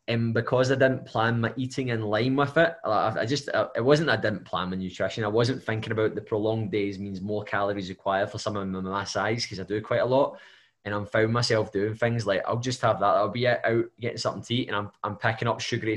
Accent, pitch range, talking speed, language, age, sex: British, 110-130 Hz, 250 wpm, English, 20-39, male